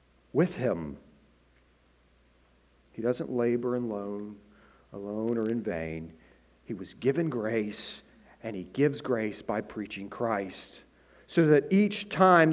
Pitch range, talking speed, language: 130-185 Hz, 120 wpm, English